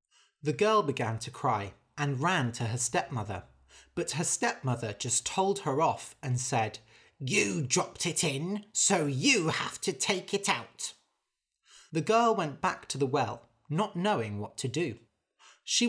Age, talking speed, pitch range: 30-49, 160 wpm, 120-185 Hz